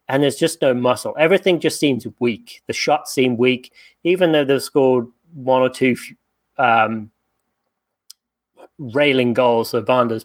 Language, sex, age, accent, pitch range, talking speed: English, male, 30-49, British, 125-160 Hz, 145 wpm